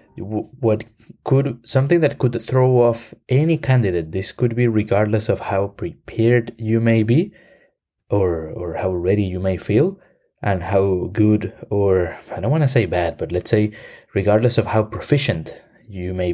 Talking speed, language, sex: 165 wpm, English, male